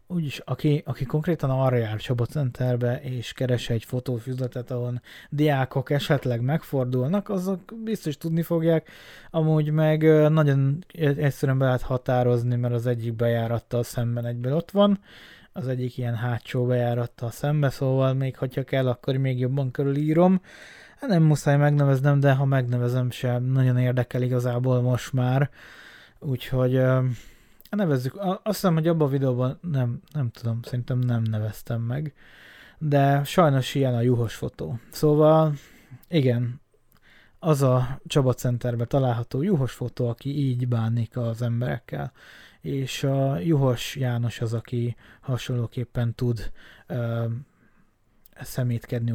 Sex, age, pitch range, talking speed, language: male, 20-39, 120-145 Hz, 130 wpm, Hungarian